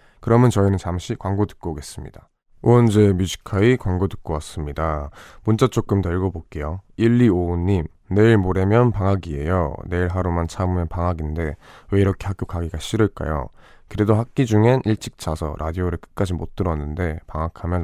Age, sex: 20-39, male